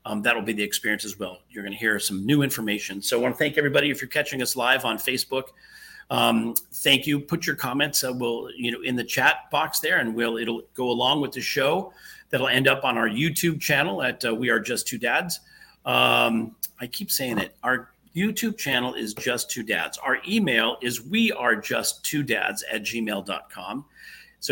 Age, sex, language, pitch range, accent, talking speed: 40-59, male, English, 110-130 Hz, American, 215 wpm